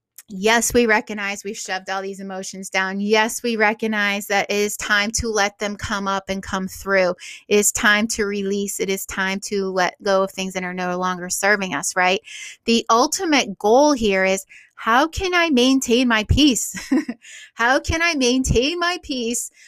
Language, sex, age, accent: English, female, 30-49, American